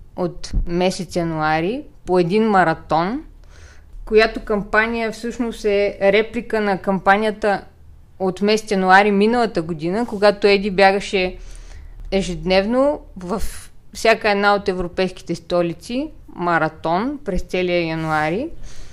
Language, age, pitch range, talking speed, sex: Bulgarian, 20-39, 170-220 Hz, 100 wpm, female